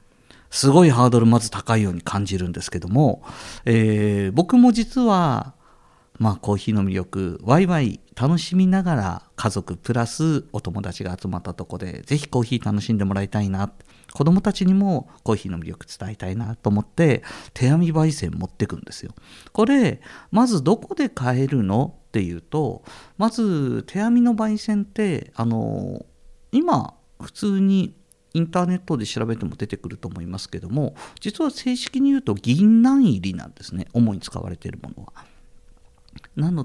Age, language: 50-69, Japanese